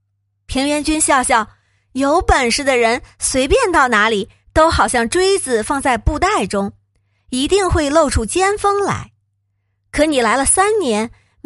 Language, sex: Chinese, female